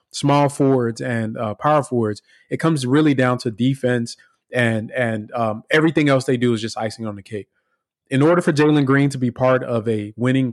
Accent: American